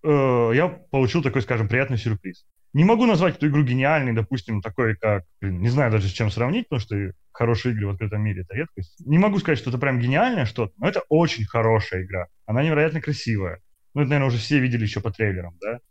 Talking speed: 220 wpm